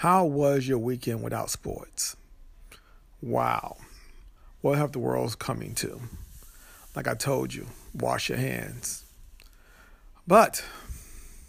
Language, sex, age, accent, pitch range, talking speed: English, male, 50-69, American, 115-160 Hz, 110 wpm